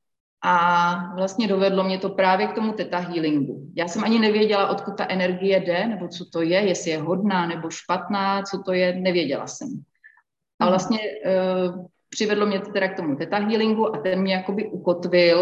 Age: 30-49